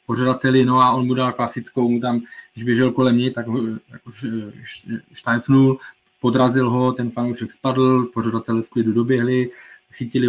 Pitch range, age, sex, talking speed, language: 115-130 Hz, 20-39, male, 155 wpm, Czech